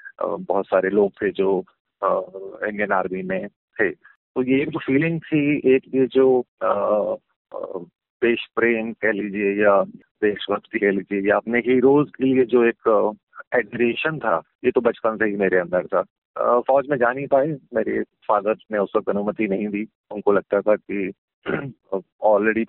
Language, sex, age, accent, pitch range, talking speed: Hindi, male, 30-49, native, 100-135 Hz, 160 wpm